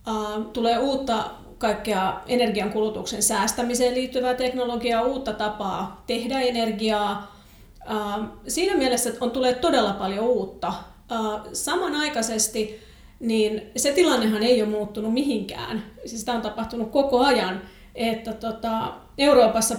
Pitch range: 220-255 Hz